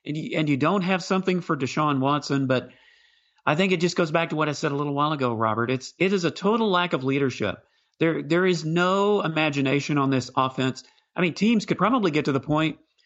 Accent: American